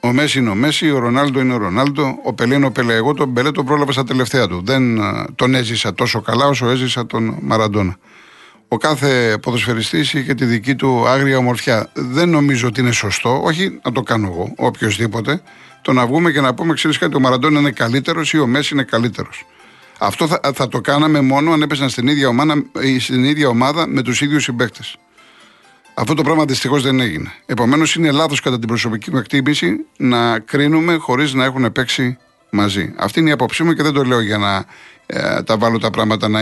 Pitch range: 115-140 Hz